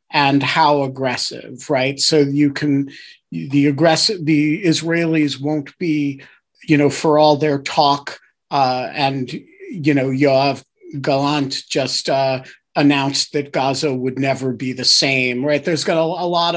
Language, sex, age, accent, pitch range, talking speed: English, male, 40-59, American, 140-165 Hz, 145 wpm